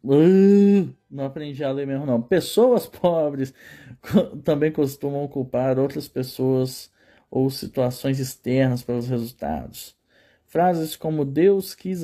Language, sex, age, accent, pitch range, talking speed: Portuguese, male, 20-39, Brazilian, 130-165 Hz, 115 wpm